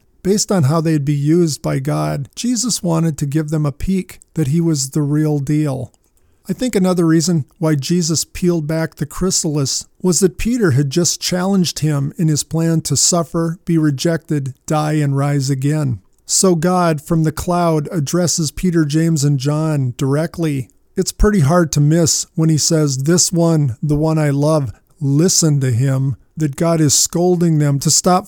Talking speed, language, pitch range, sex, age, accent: 180 wpm, English, 145-170 Hz, male, 50-69, American